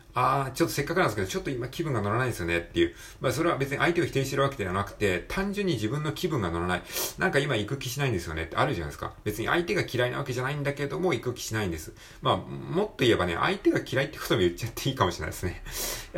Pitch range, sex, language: 85-130 Hz, male, Japanese